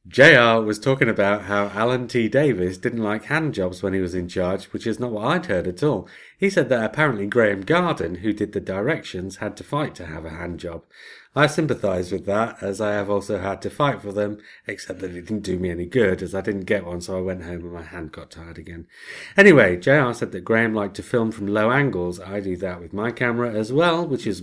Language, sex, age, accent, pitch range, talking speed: English, male, 30-49, British, 90-120 Hz, 245 wpm